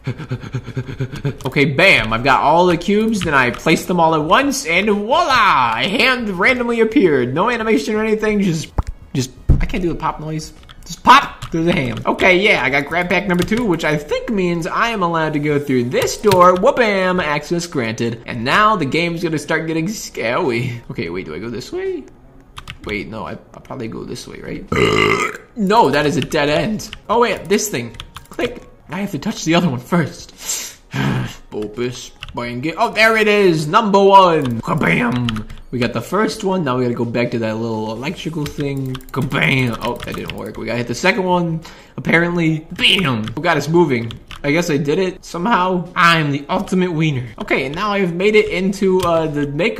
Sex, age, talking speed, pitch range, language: male, 20-39, 200 wpm, 135-200 Hz, English